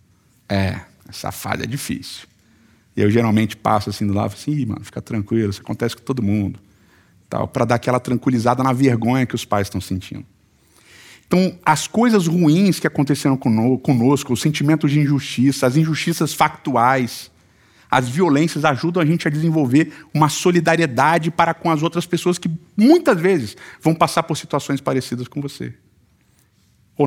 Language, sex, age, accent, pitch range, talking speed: Portuguese, male, 50-69, Brazilian, 110-155 Hz, 160 wpm